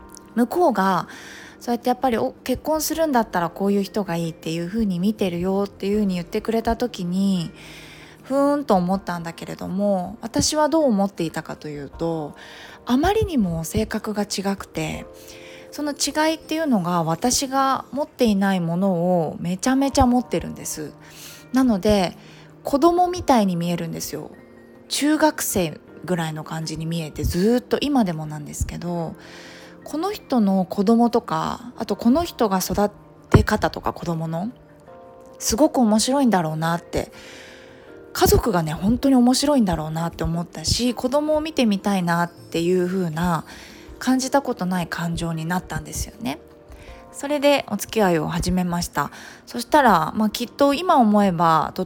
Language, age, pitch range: Japanese, 20-39, 170-250 Hz